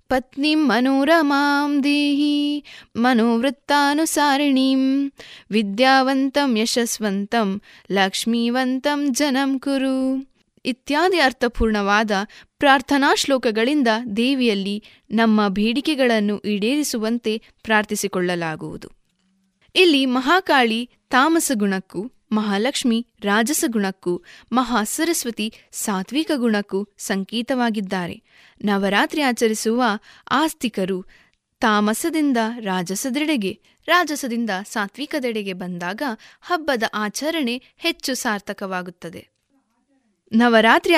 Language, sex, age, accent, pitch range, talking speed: Kannada, female, 20-39, native, 210-280 Hz, 60 wpm